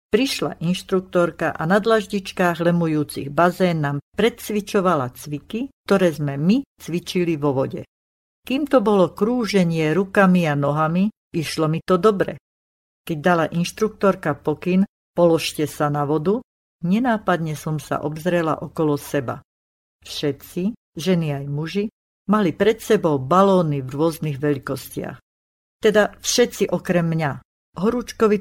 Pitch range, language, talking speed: 150-195 Hz, Slovak, 120 wpm